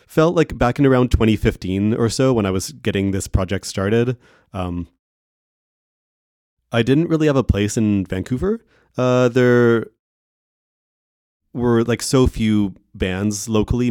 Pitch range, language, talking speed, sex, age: 95-115 Hz, English, 140 wpm, male, 30-49